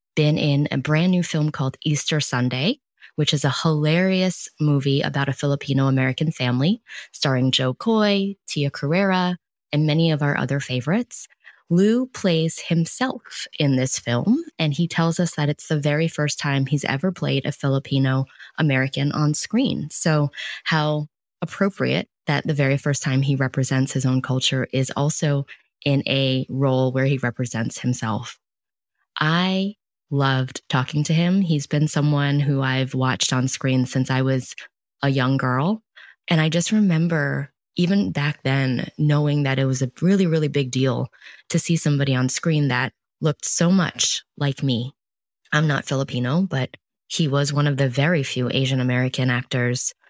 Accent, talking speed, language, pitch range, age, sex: American, 165 wpm, English, 130-160 Hz, 20-39, female